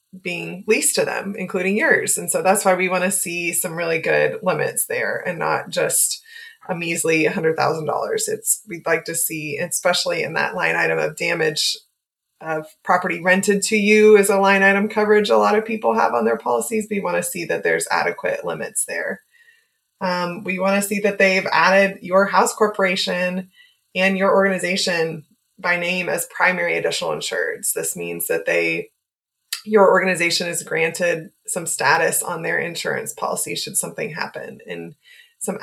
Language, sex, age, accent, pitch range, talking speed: English, female, 20-39, American, 175-240 Hz, 175 wpm